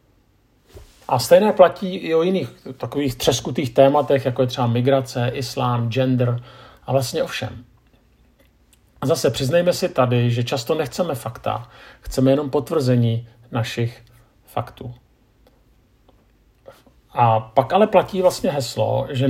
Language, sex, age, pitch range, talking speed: Czech, male, 50-69, 120-140 Hz, 125 wpm